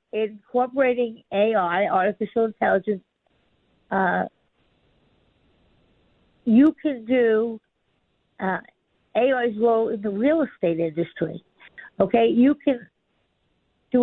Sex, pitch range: female, 215-270 Hz